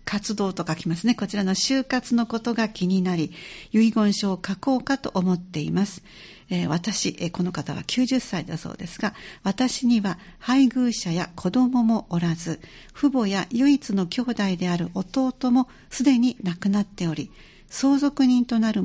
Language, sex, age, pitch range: Japanese, female, 60-79, 185-240 Hz